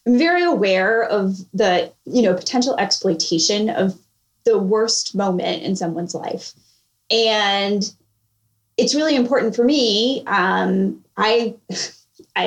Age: 20-39